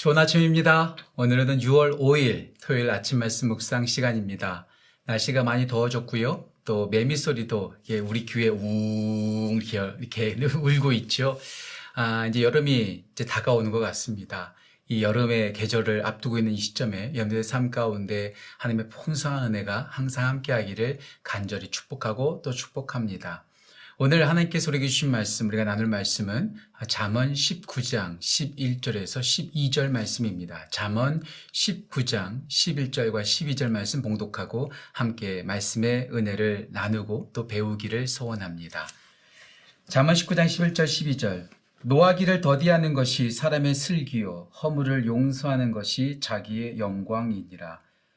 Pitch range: 110-145 Hz